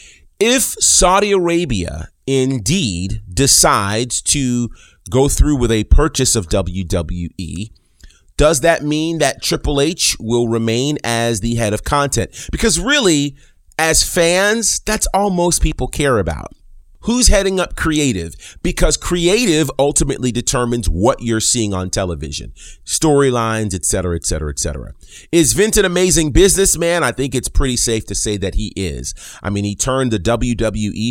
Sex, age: male, 30-49